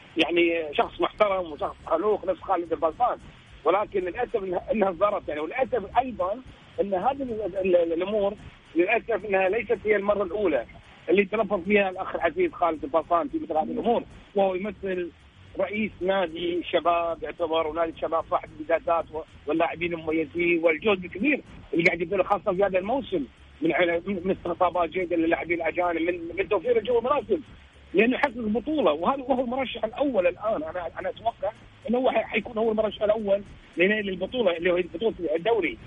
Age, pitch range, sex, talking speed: 40-59, 175-240 Hz, male, 150 wpm